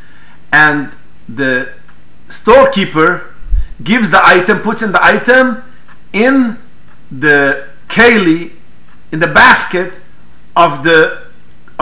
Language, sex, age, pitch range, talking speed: English, male, 50-69, 160-220 Hz, 90 wpm